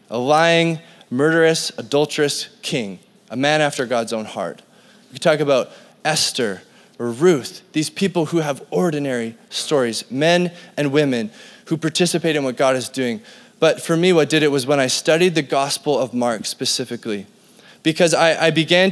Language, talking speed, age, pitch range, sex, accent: English, 170 wpm, 20-39, 145-185 Hz, male, American